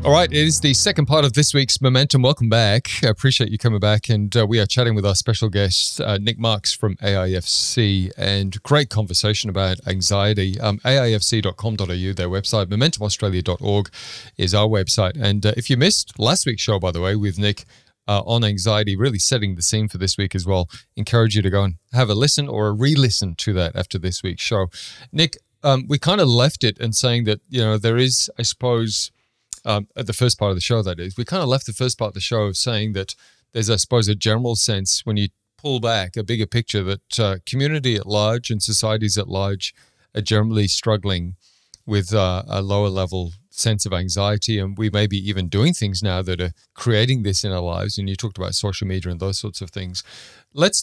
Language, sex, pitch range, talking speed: English, male, 95-120 Hz, 220 wpm